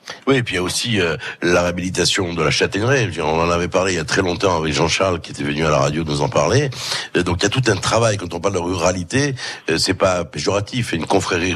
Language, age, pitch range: French, 60-79, 85-125 Hz